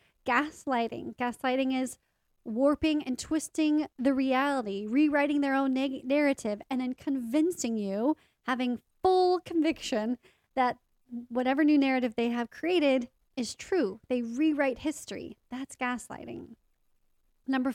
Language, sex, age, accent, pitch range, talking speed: English, female, 30-49, American, 235-275 Hz, 115 wpm